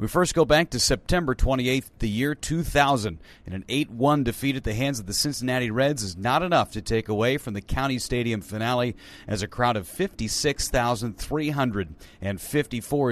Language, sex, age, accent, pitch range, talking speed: English, male, 40-59, American, 110-140 Hz, 170 wpm